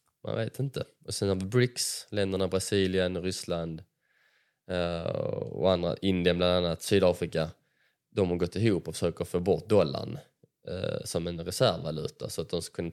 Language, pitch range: Swedish, 85-95 Hz